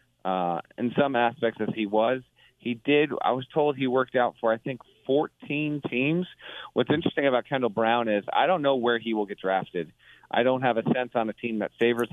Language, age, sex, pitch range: English, 40-59, male, 105-125 Hz